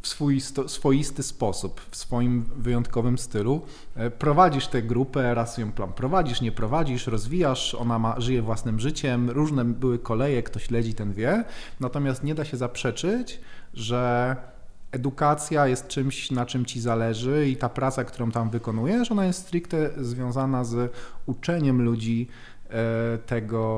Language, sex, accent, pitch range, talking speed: Polish, male, native, 115-130 Hz, 140 wpm